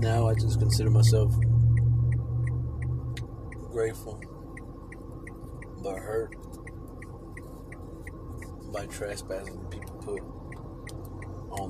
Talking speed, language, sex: 65 wpm, English, male